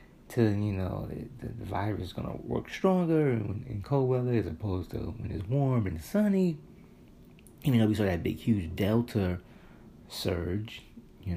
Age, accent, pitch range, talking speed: 30-49, American, 90-115 Hz, 185 wpm